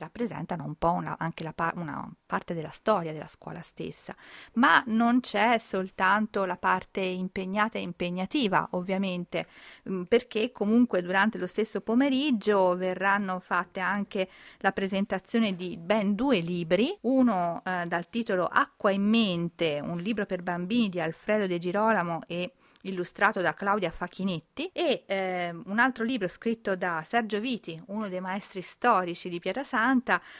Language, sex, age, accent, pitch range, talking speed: Italian, female, 40-59, native, 180-220 Hz, 140 wpm